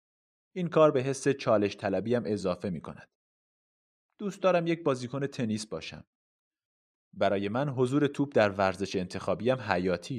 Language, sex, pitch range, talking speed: Persian, male, 95-130 Hz, 135 wpm